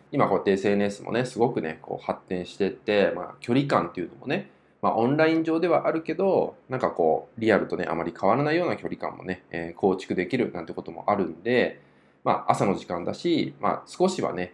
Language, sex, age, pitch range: Japanese, male, 20-39, 95-115 Hz